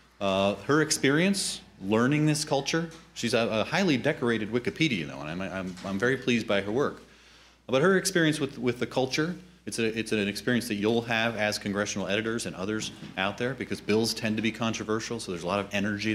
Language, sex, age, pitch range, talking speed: English, male, 30-49, 95-115 Hz, 210 wpm